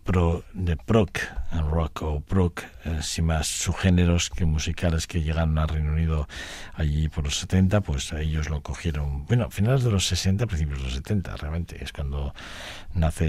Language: Spanish